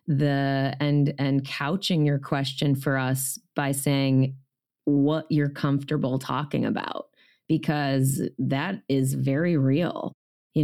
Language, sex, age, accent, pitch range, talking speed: English, female, 30-49, American, 140-160 Hz, 120 wpm